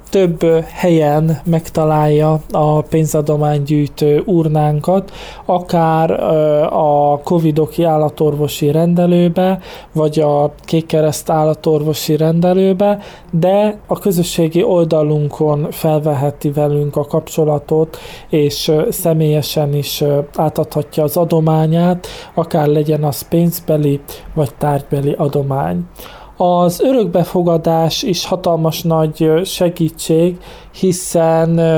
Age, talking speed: 20-39, 85 wpm